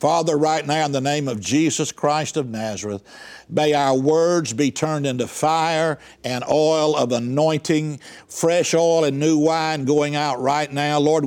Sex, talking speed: male, 170 wpm